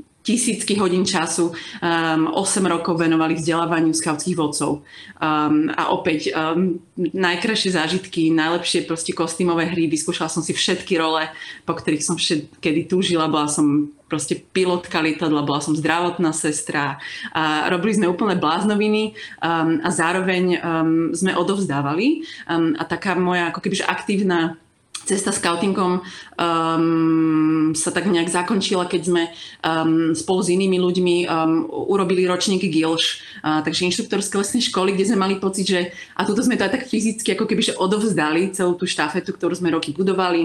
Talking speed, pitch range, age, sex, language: 155 wpm, 160-190 Hz, 30-49, female, Slovak